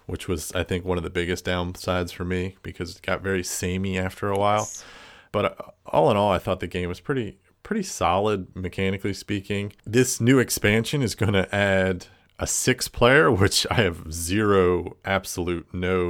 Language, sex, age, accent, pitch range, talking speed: English, male, 40-59, American, 90-100 Hz, 185 wpm